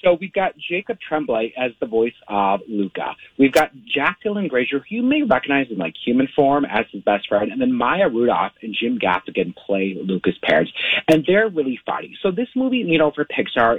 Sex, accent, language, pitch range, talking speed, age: male, American, English, 115-175 Hz, 210 wpm, 30-49